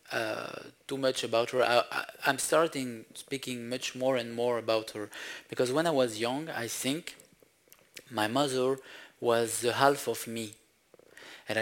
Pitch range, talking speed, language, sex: 115-140 Hz, 150 wpm, English, male